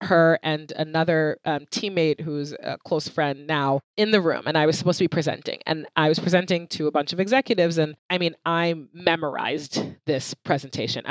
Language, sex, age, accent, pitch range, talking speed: English, female, 20-39, American, 150-210 Hz, 195 wpm